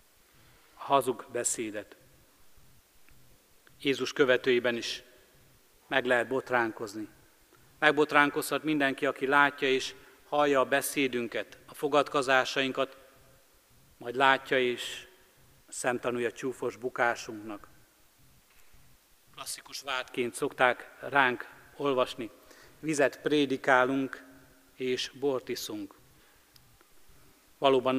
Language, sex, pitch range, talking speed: Hungarian, male, 125-140 Hz, 75 wpm